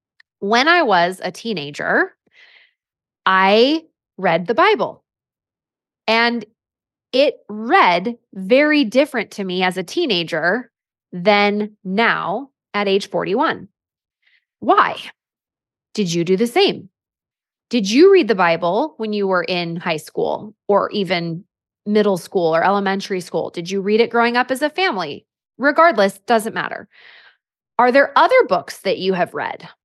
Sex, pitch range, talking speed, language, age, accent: female, 180-245 Hz, 135 wpm, English, 20-39, American